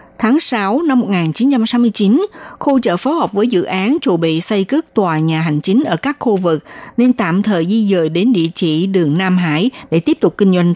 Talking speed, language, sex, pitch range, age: 220 wpm, Vietnamese, female, 175-235 Hz, 60-79